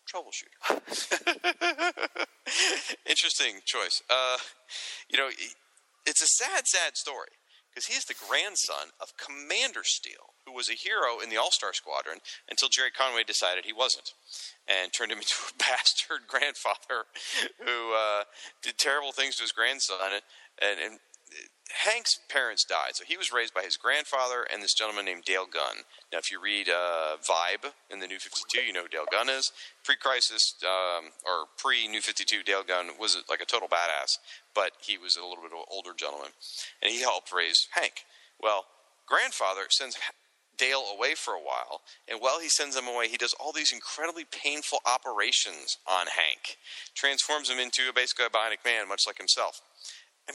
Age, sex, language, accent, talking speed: 40-59, male, English, American, 175 wpm